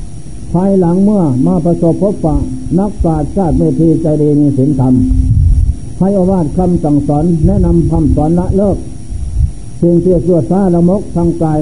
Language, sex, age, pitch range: Thai, male, 60-79, 130-180 Hz